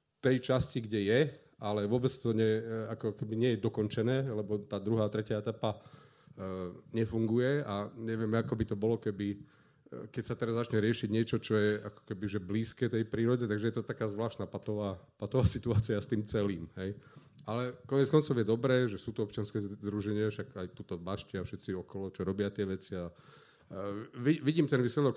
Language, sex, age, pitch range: Slovak, male, 40-59, 105-125 Hz